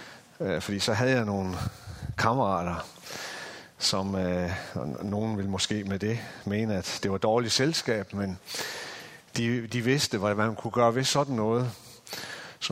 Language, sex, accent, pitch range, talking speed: Danish, male, native, 95-115 Hz, 145 wpm